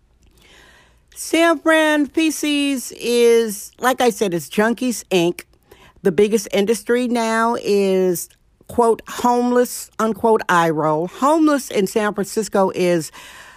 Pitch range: 175-240 Hz